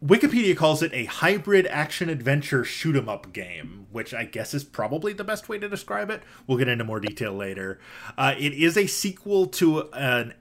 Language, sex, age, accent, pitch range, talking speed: English, male, 20-39, American, 115-150 Hz, 185 wpm